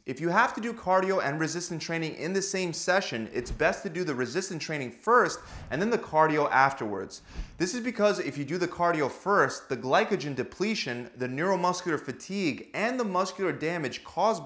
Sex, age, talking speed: male, 20-39, 190 wpm